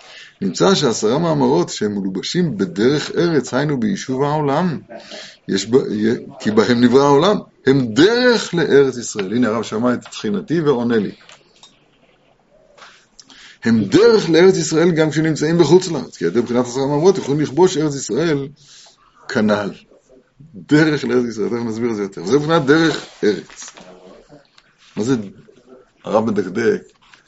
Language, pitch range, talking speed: Hebrew, 120-160 Hz, 130 wpm